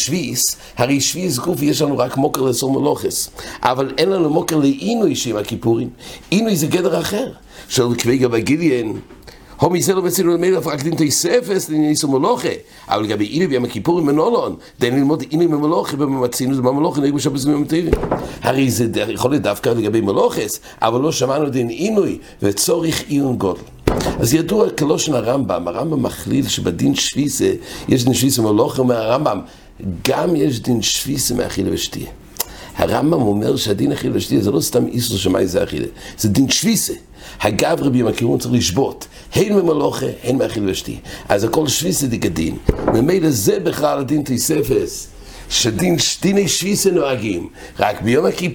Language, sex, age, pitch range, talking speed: English, male, 60-79, 125-165 Hz, 100 wpm